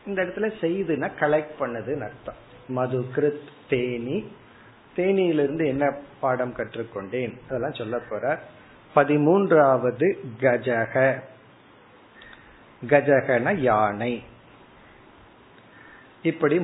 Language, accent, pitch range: Tamil, native, 125-155 Hz